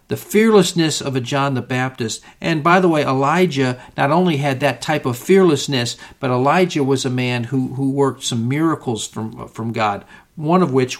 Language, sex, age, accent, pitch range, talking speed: English, male, 50-69, American, 125-155 Hz, 190 wpm